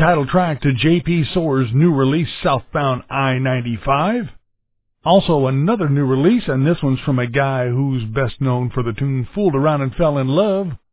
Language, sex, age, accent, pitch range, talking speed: English, male, 50-69, American, 125-160 Hz, 170 wpm